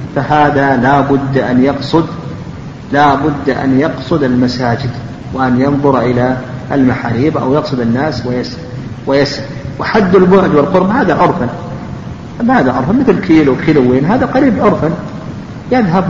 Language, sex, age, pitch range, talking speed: Arabic, male, 50-69, 135-180 Hz, 120 wpm